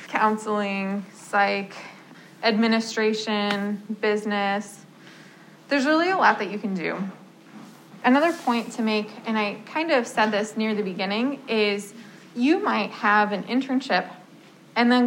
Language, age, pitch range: English, 20-39, 200-235 Hz